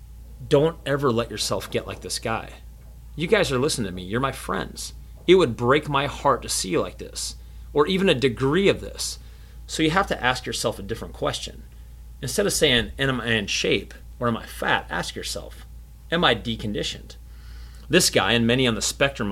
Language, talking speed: English, 200 wpm